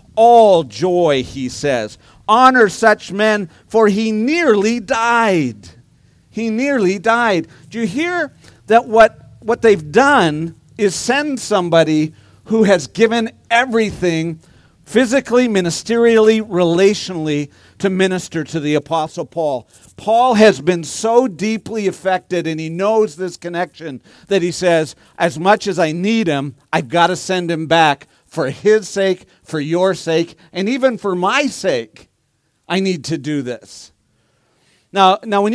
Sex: male